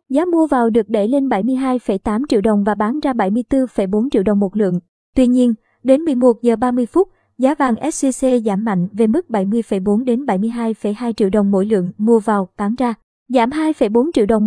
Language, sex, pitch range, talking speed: Vietnamese, male, 210-255 Hz, 190 wpm